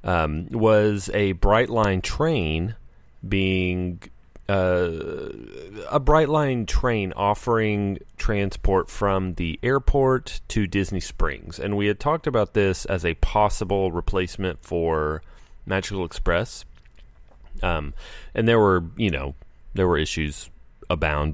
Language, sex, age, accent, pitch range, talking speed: English, male, 30-49, American, 80-100 Hz, 115 wpm